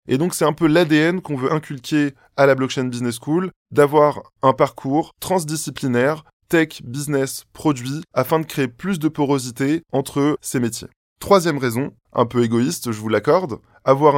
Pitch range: 125-160 Hz